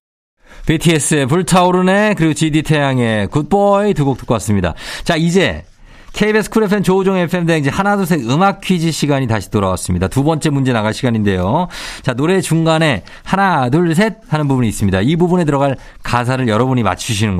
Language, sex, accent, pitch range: Korean, male, native, 115-180 Hz